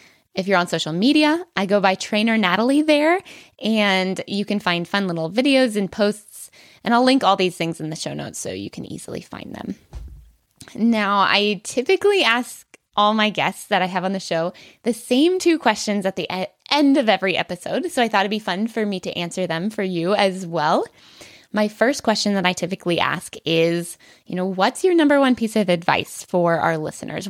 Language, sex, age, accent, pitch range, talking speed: English, female, 20-39, American, 180-240 Hz, 205 wpm